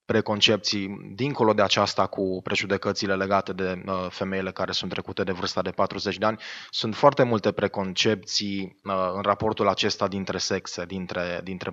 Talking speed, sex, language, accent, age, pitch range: 150 wpm, male, Romanian, native, 20-39, 95-110 Hz